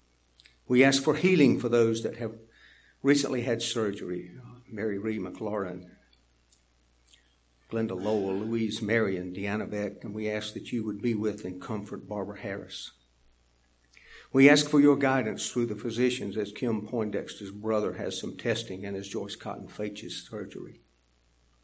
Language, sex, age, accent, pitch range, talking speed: English, male, 60-79, American, 90-120 Hz, 145 wpm